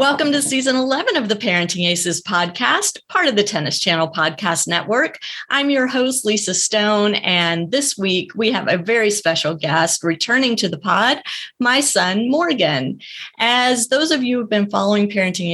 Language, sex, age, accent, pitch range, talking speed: English, female, 30-49, American, 180-235 Hz, 180 wpm